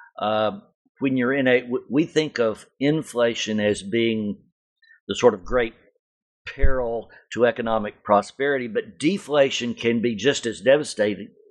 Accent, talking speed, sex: American, 135 wpm, male